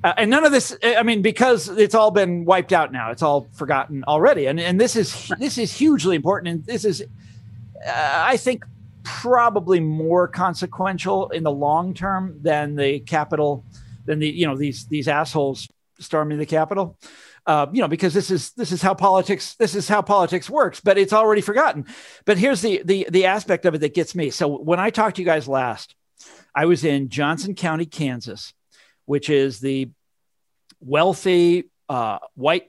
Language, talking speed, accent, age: English, 185 wpm, American, 50-69